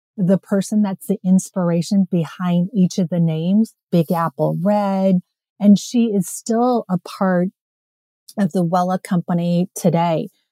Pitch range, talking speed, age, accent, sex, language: 175-200 Hz, 135 wpm, 30-49, American, female, English